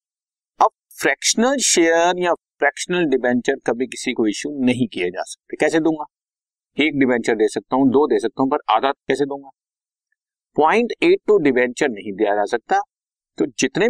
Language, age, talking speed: Hindi, 50-69, 160 wpm